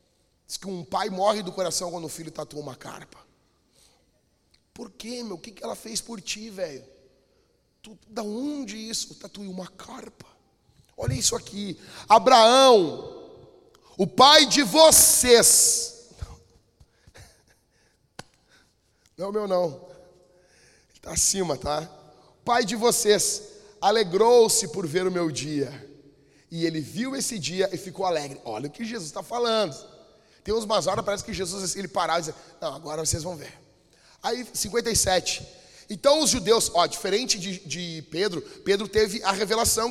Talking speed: 145 wpm